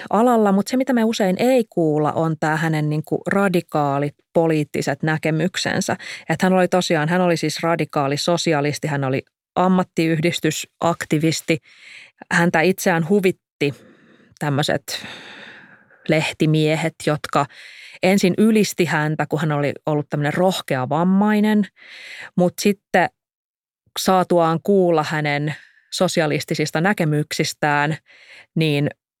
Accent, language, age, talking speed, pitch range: native, Finnish, 30-49, 105 wpm, 150-180 Hz